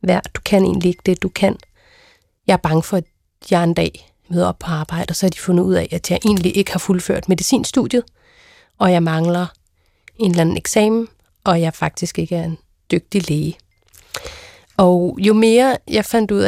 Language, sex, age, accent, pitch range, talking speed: Danish, female, 30-49, native, 180-220 Hz, 195 wpm